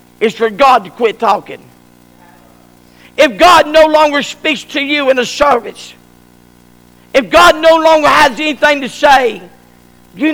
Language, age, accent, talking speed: English, 50-69, American, 145 wpm